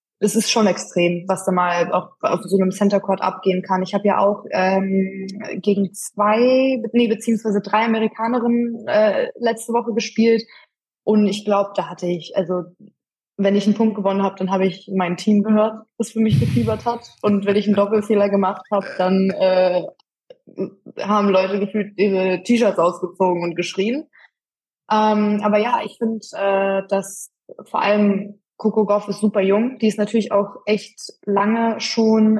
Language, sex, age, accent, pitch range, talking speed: German, female, 20-39, German, 195-225 Hz, 170 wpm